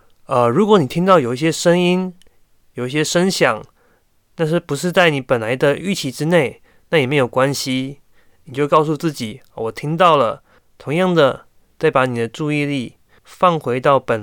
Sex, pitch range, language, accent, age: male, 125-165 Hz, Chinese, native, 20-39